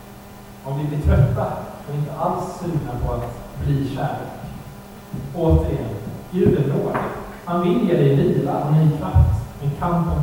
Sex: male